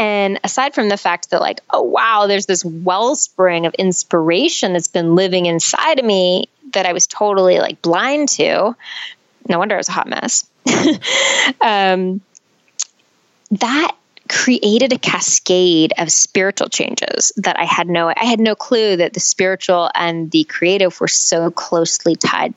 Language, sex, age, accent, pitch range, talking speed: English, female, 20-39, American, 170-225 Hz, 160 wpm